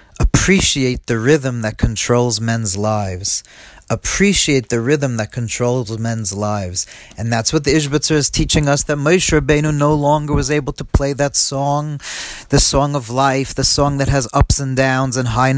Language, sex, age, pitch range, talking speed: English, male, 40-59, 120-145 Hz, 175 wpm